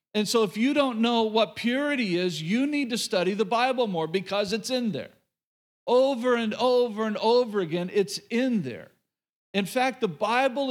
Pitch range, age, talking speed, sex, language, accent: 175-225 Hz, 50-69, 185 wpm, male, English, American